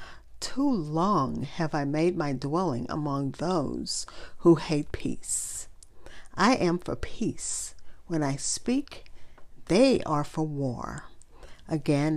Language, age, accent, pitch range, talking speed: English, 50-69, American, 145-175 Hz, 120 wpm